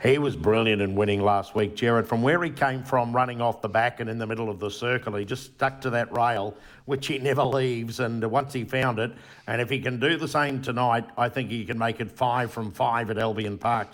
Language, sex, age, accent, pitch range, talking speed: English, male, 50-69, Australian, 115-135 Hz, 255 wpm